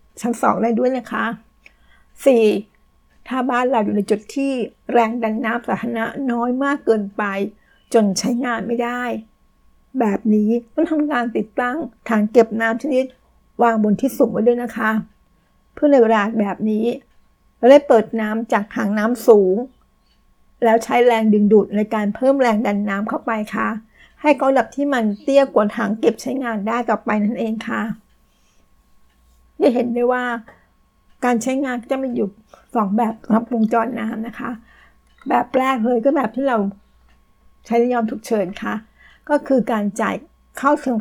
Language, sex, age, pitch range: Thai, female, 60-79, 215-250 Hz